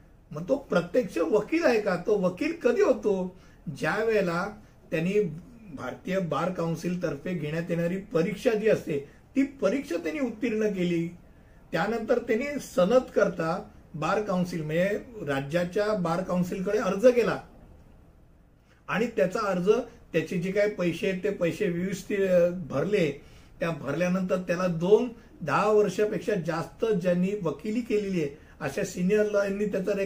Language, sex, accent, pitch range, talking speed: Hindi, male, native, 170-215 Hz, 90 wpm